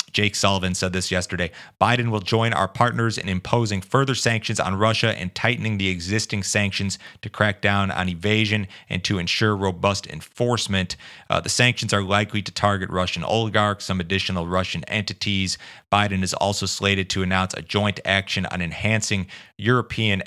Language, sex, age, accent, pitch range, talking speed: English, male, 30-49, American, 90-105 Hz, 165 wpm